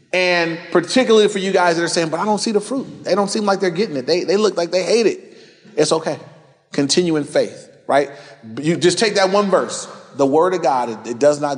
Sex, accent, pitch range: male, American, 140-190 Hz